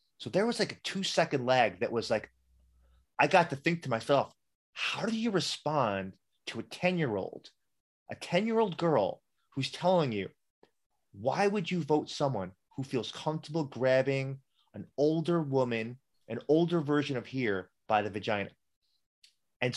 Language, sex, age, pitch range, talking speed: English, male, 30-49, 120-170 Hz, 150 wpm